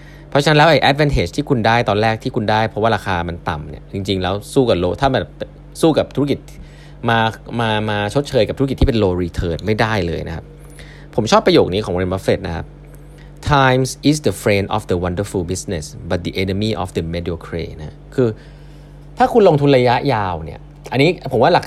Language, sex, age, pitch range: Thai, male, 20-39, 100-150 Hz